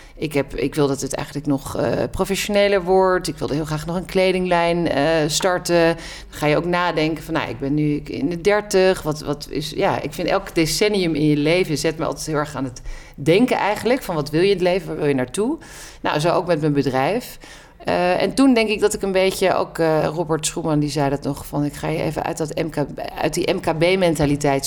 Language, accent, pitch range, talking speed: Dutch, Dutch, 145-180 Hz, 240 wpm